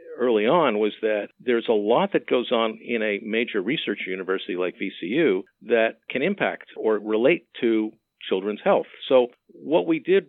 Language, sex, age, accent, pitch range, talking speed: English, male, 50-69, American, 110-135 Hz, 170 wpm